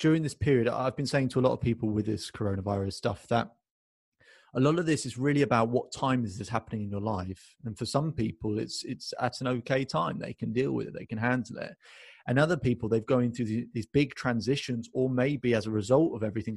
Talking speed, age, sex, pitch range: 245 wpm, 30-49, male, 110-135 Hz